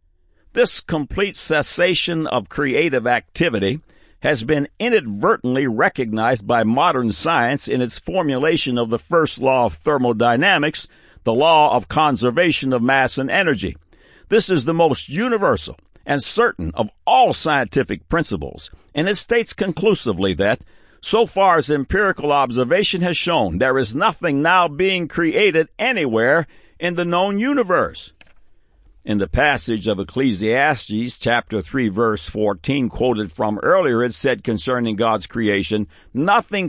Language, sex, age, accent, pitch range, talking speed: English, male, 60-79, American, 100-165 Hz, 135 wpm